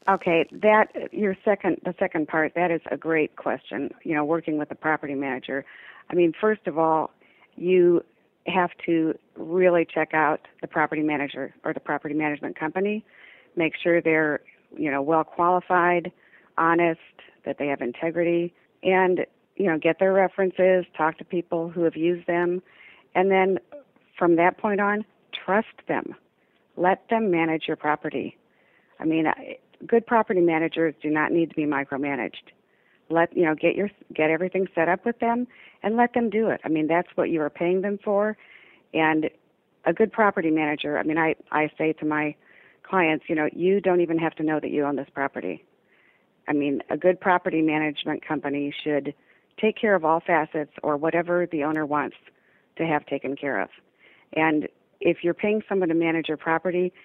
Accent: American